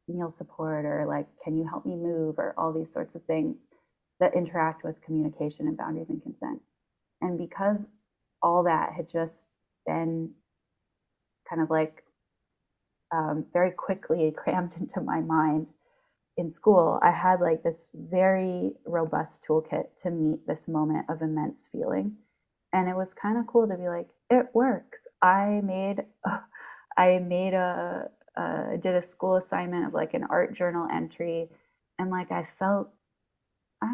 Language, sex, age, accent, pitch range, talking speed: English, female, 20-39, American, 160-185 Hz, 155 wpm